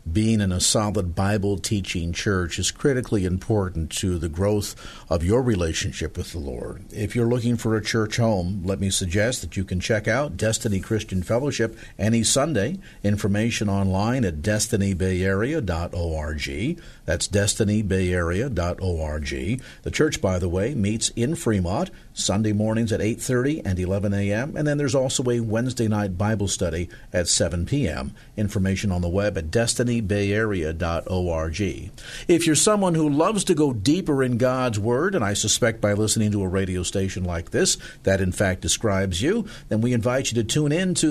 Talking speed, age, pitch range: 170 wpm, 50-69, 95-130 Hz